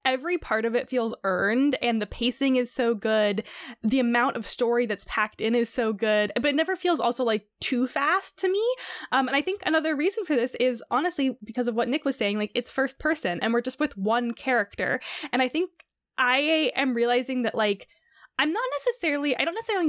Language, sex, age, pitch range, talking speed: English, female, 10-29, 205-275 Hz, 215 wpm